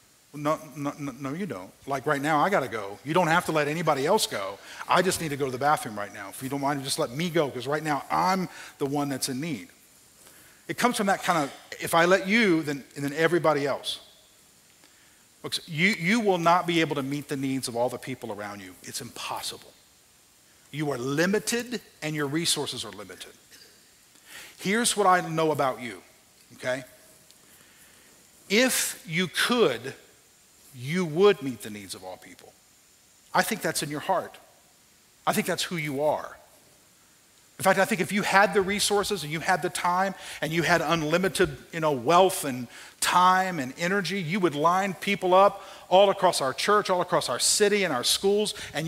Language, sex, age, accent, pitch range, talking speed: English, male, 50-69, American, 140-190 Hz, 195 wpm